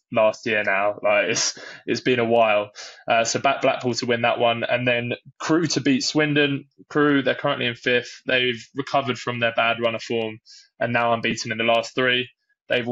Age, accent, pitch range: 20-39, British, 115-125 Hz